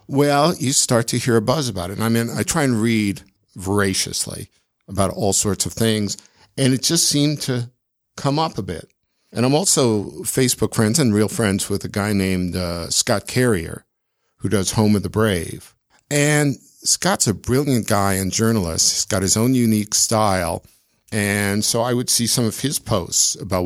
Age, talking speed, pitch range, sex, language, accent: 50-69, 190 wpm, 95-115 Hz, male, English, American